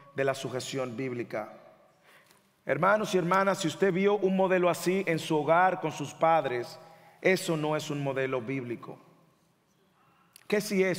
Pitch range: 160-210 Hz